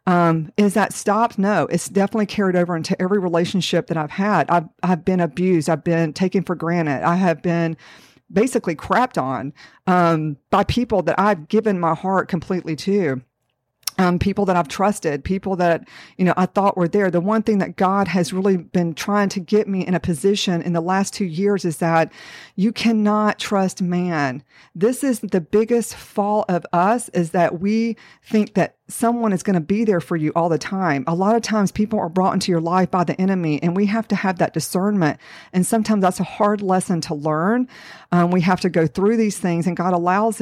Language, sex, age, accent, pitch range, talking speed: English, female, 50-69, American, 170-205 Hz, 210 wpm